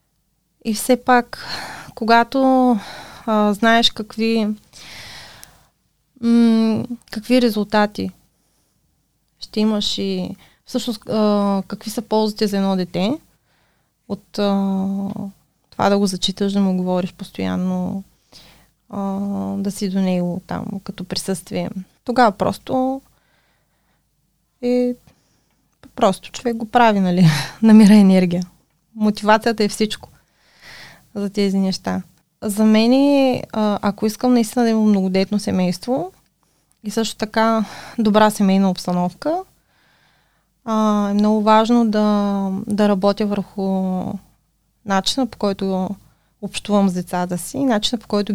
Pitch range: 190-220 Hz